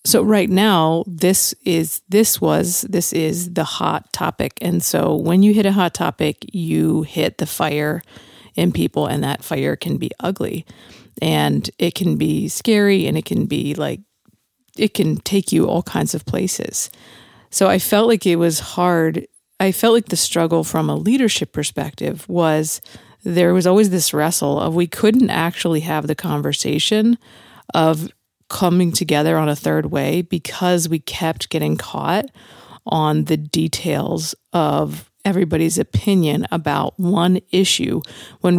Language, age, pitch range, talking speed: English, 40-59, 155-190 Hz, 155 wpm